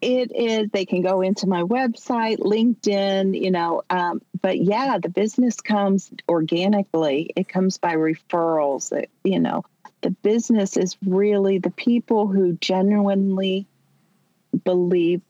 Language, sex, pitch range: English, female, 170-205 Hz